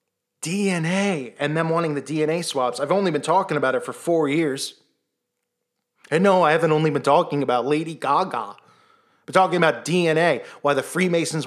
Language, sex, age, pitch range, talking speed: English, male, 20-39, 135-175 Hz, 180 wpm